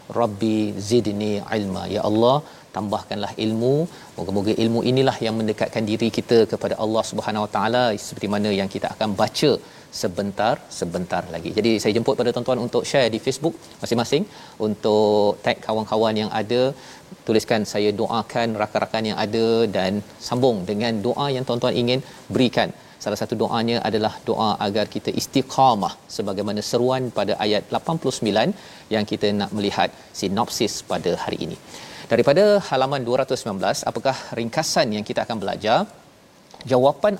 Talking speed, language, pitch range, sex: 140 wpm, Malayalam, 110-130 Hz, male